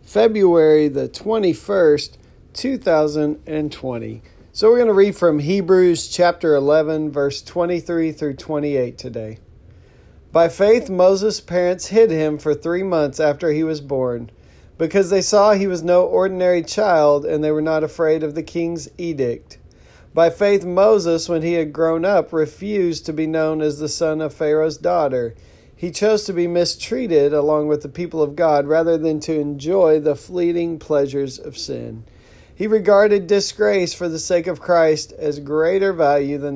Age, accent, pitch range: 40-59, American, 150-180 Hz